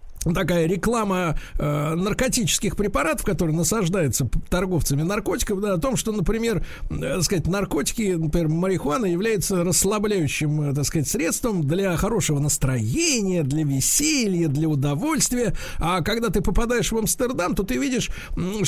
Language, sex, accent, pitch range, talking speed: Russian, male, native, 155-220 Hz, 130 wpm